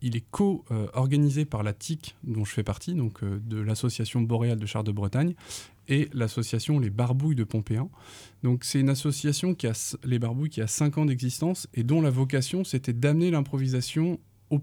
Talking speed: 160 wpm